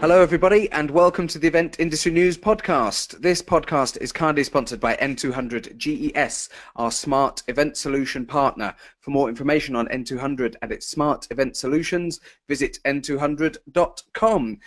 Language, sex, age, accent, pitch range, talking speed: English, male, 30-49, British, 125-155 Hz, 140 wpm